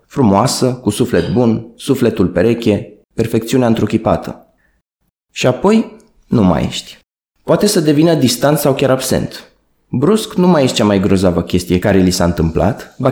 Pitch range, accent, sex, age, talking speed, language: 105-150 Hz, native, male, 20-39, 150 wpm, Romanian